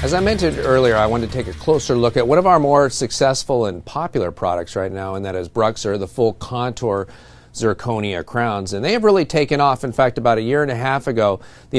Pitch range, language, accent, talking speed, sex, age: 110-145 Hz, English, American, 240 wpm, male, 40-59